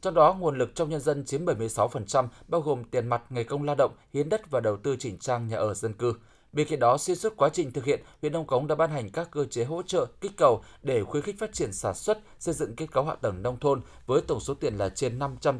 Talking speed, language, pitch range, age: 275 wpm, Vietnamese, 115-155 Hz, 20-39